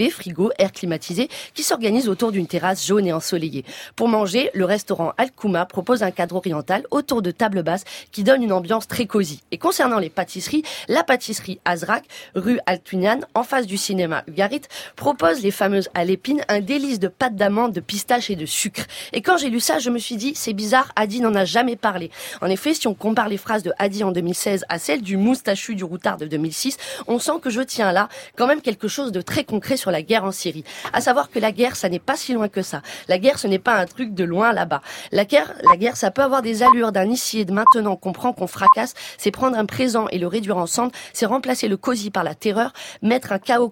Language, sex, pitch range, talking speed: French, female, 190-245 Hz, 235 wpm